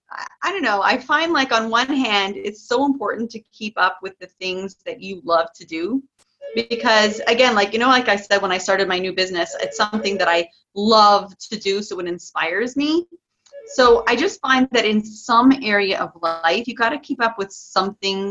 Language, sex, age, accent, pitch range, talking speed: English, female, 30-49, American, 190-265 Hz, 215 wpm